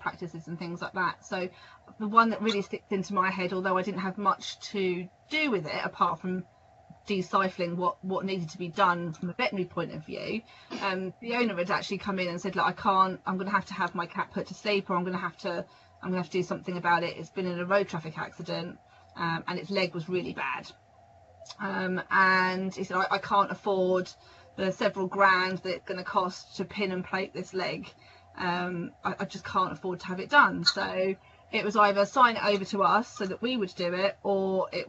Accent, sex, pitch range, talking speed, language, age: British, female, 185-210 Hz, 230 wpm, English, 30-49